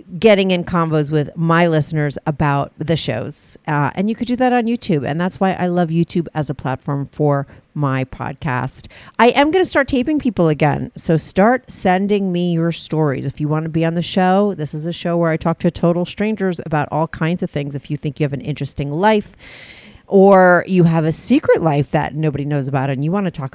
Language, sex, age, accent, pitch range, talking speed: English, female, 40-59, American, 150-200 Hz, 225 wpm